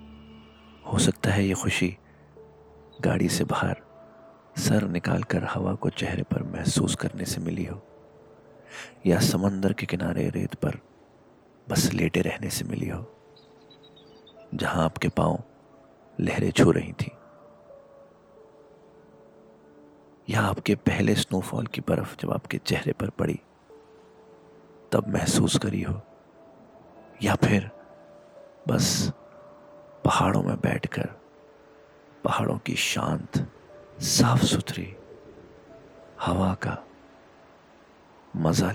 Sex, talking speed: male, 105 wpm